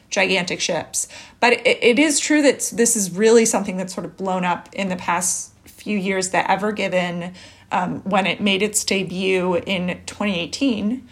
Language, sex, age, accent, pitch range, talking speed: English, female, 30-49, American, 185-230 Hz, 180 wpm